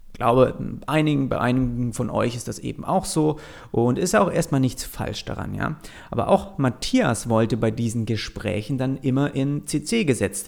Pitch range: 115-155 Hz